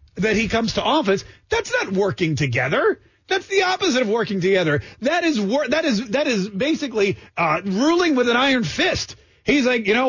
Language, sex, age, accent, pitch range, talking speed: English, male, 30-49, American, 175-235 Hz, 195 wpm